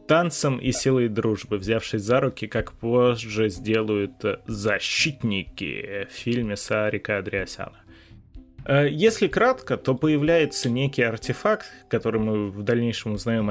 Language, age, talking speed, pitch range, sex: Russian, 20-39, 115 wpm, 105-130 Hz, male